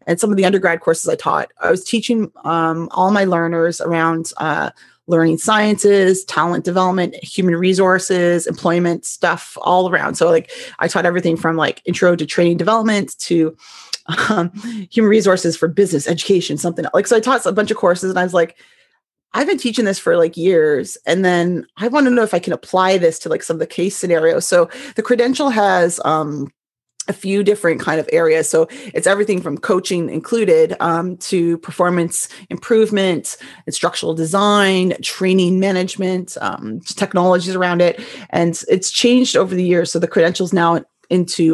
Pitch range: 170-210 Hz